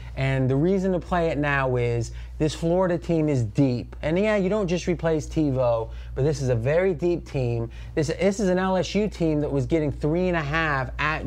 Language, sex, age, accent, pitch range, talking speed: English, male, 30-49, American, 130-170 Hz, 220 wpm